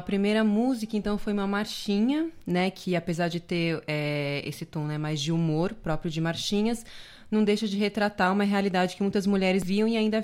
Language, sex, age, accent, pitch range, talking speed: Portuguese, female, 20-39, Brazilian, 160-200 Hz, 195 wpm